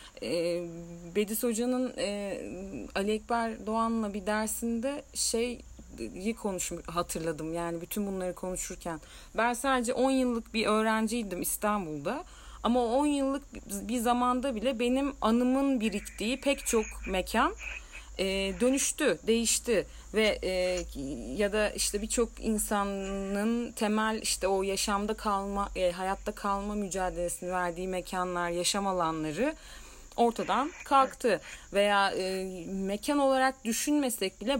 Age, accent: 40-59, native